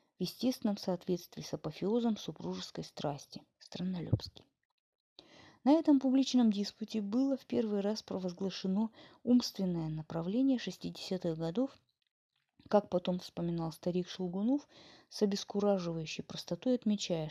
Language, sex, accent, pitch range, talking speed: Russian, female, native, 175-250 Hz, 105 wpm